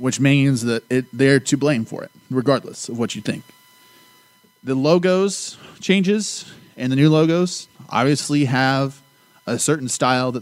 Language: English